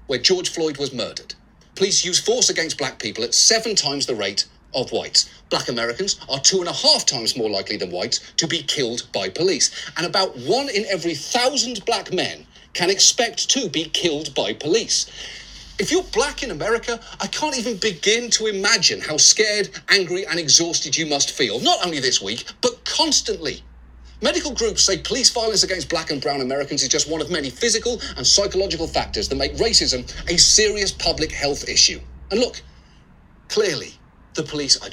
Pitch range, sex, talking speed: 155-230 Hz, male, 185 wpm